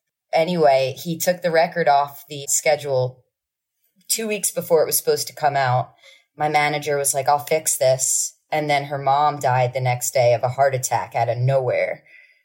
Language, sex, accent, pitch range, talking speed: English, female, American, 135-185 Hz, 190 wpm